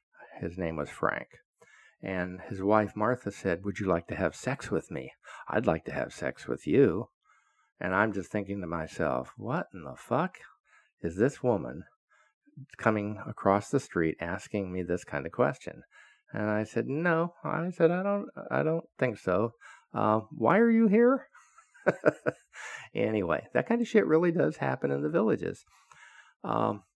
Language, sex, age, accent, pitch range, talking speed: English, male, 50-69, American, 95-120 Hz, 170 wpm